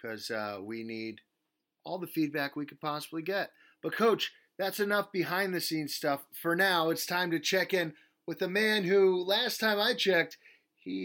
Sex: male